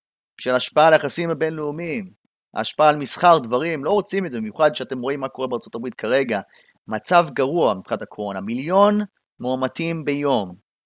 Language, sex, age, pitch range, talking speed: Hebrew, male, 30-49, 125-180 Hz, 155 wpm